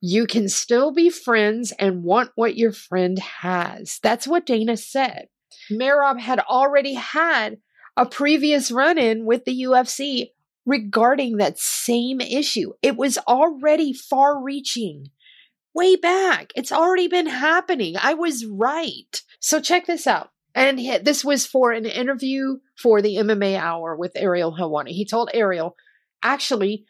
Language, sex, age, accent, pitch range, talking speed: English, female, 40-59, American, 210-275 Hz, 140 wpm